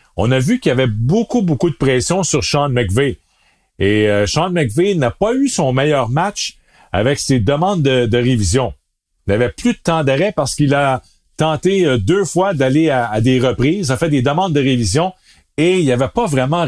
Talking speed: 210 wpm